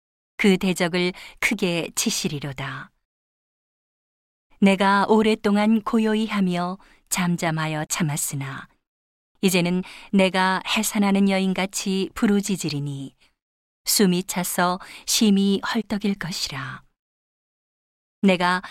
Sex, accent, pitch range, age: female, native, 175-210 Hz, 40-59